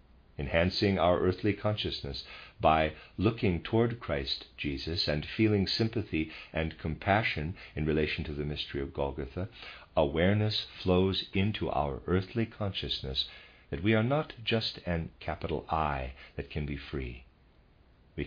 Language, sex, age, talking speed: English, male, 50-69, 130 wpm